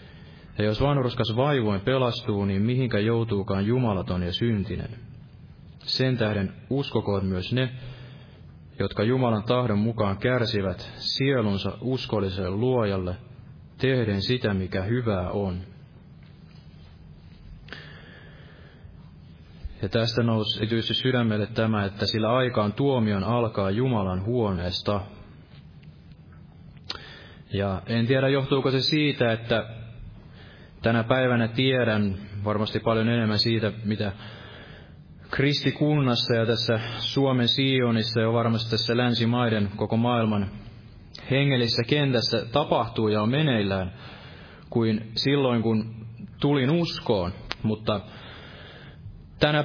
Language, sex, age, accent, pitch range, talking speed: Finnish, male, 30-49, native, 105-130 Hz, 95 wpm